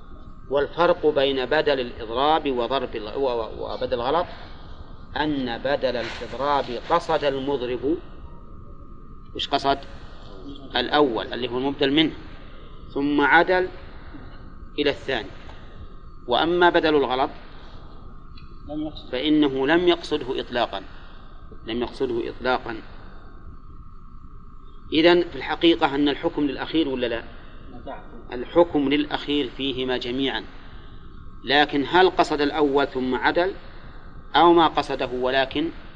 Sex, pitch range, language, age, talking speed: male, 120-155 Hz, Arabic, 40-59, 90 wpm